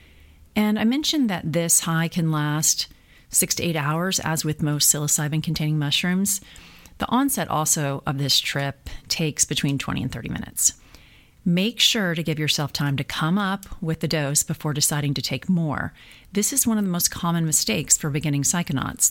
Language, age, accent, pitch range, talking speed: English, 40-59, American, 145-175 Hz, 180 wpm